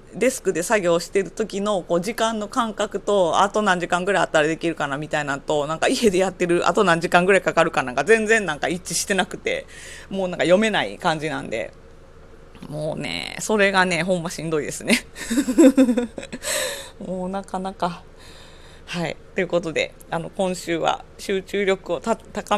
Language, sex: Japanese, female